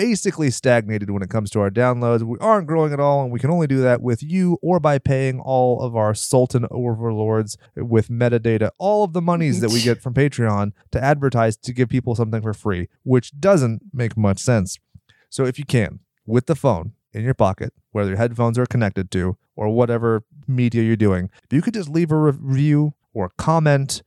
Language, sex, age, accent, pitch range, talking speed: English, male, 30-49, American, 110-145 Hz, 205 wpm